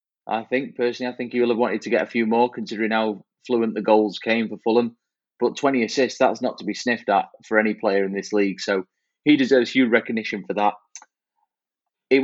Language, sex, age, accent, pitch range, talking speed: English, male, 20-39, British, 105-120 Hz, 220 wpm